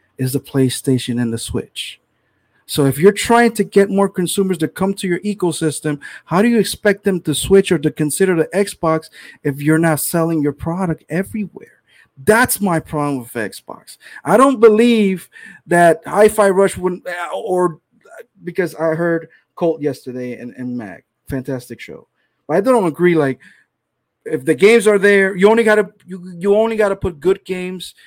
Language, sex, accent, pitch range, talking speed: English, male, American, 135-190 Hz, 175 wpm